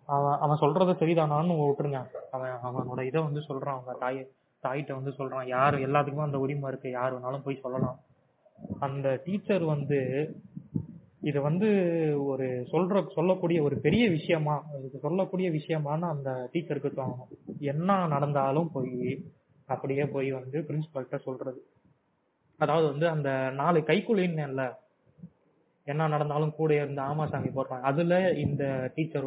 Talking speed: 130 wpm